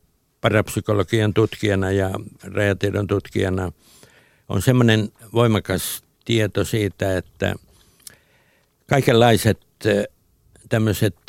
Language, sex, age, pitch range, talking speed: Finnish, male, 60-79, 95-110 Hz, 70 wpm